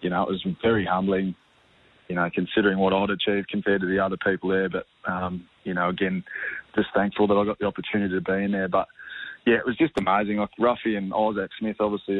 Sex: male